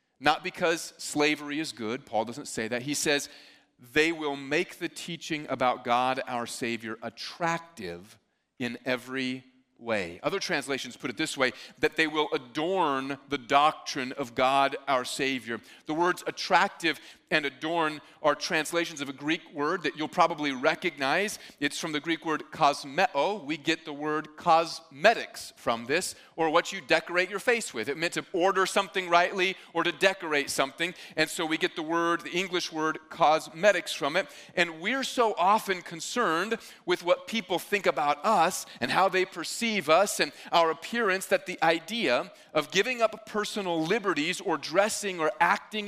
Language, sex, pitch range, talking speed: English, male, 155-195 Hz, 165 wpm